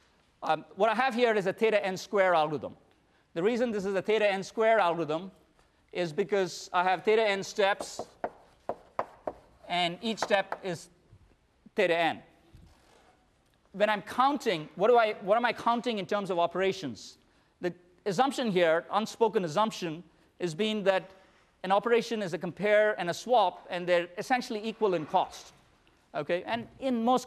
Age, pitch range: 40-59, 175-220 Hz